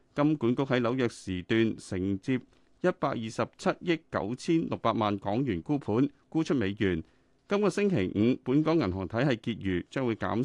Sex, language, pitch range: male, Chinese, 105-150 Hz